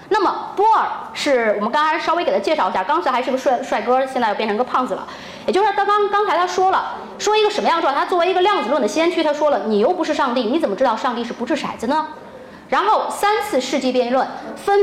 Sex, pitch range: female, 240-390 Hz